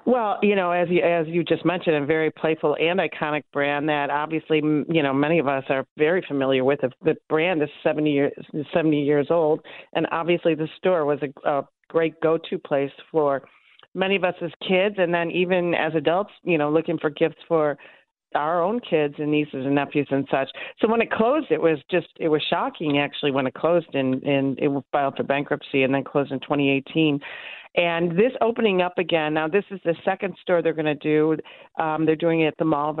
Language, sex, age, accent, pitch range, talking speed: English, female, 40-59, American, 140-170 Hz, 210 wpm